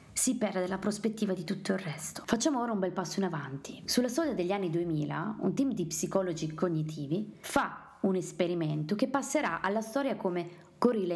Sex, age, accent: female, 20-39, native